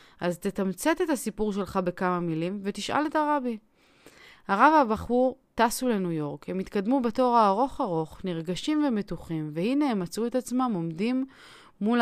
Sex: female